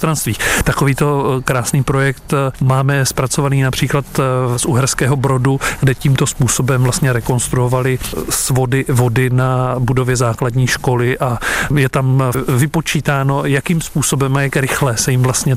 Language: Czech